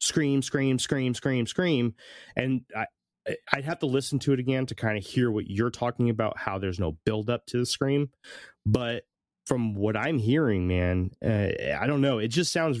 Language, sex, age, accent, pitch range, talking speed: English, male, 30-49, American, 95-125 Hz, 200 wpm